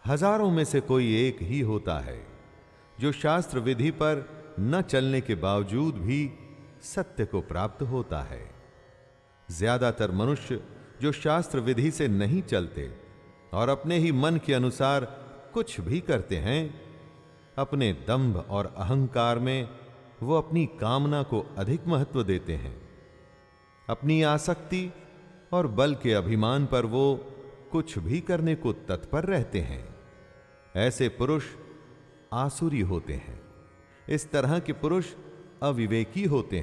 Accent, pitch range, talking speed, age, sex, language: native, 110-155 Hz, 130 wpm, 40-59, male, Hindi